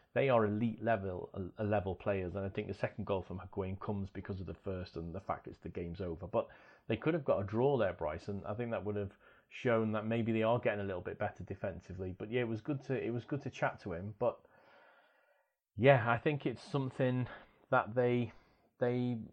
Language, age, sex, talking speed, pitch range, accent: English, 30-49, male, 235 wpm, 100-115 Hz, British